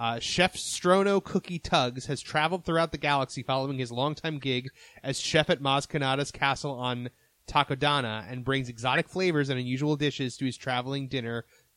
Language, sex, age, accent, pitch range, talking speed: English, male, 30-49, American, 125-155 Hz, 165 wpm